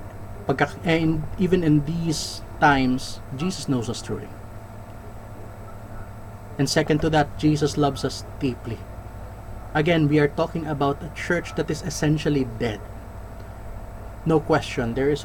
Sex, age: male, 20-39